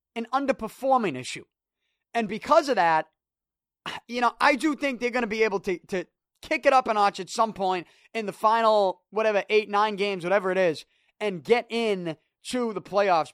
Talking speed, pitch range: 195 wpm, 170-240 Hz